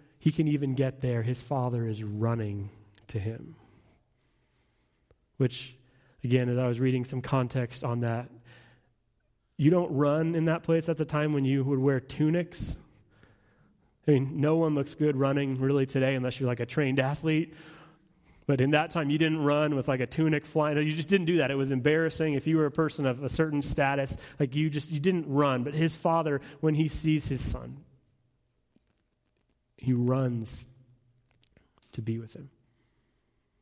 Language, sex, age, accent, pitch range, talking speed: English, male, 30-49, American, 130-150 Hz, 175 wpm